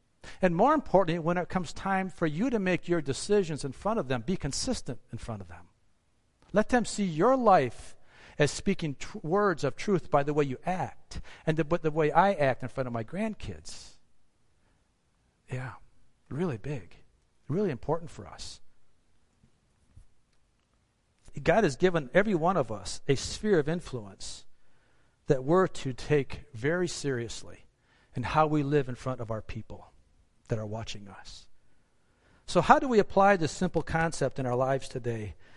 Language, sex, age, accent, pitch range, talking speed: English, male, 50-69, American, 120-175 Hz, 165 wpm